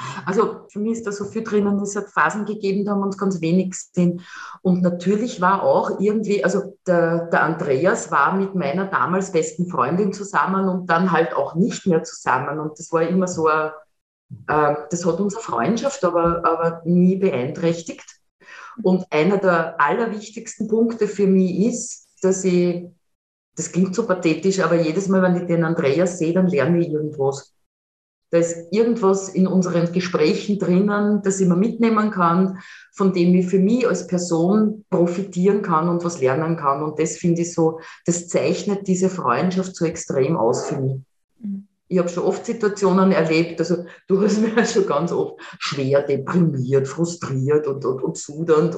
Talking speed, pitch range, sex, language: 170 wpm, 160-195 Hz, female, German